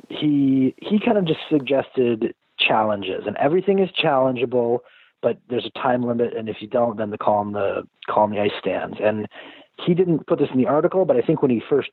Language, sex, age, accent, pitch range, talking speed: English, male, 30-49, American, 115-150 Hz, 220 wpm